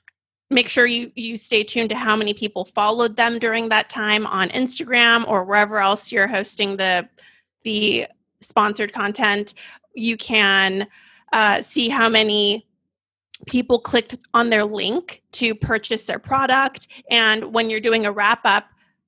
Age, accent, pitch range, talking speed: 30-49, American, 210-250 Hz, 150 wpm